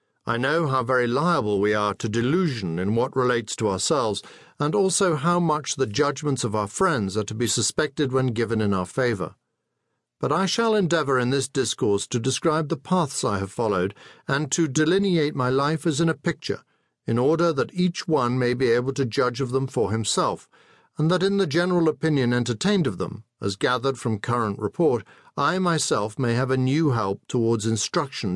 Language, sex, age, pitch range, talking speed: English, male, 50-69, 115-155 Hz, 195 wpm